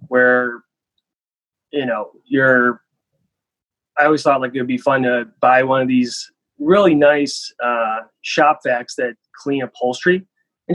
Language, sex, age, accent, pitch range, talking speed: English, male, 20-39, American, 125-160 Hz, 145 wpm